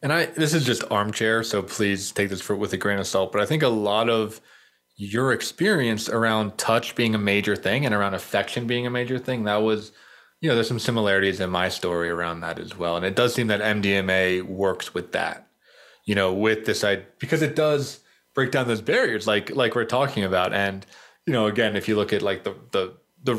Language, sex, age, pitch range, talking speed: English, male, 20-39, 95-115 Hz, 225 wpm